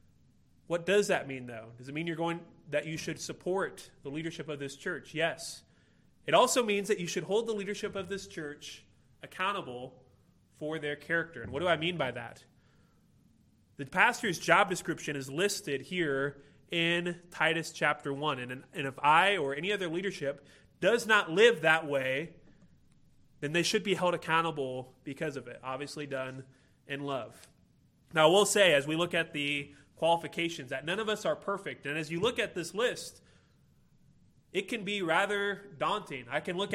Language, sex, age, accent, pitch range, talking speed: English, male, 30-49, American, 140-180 Hz, 180 wpm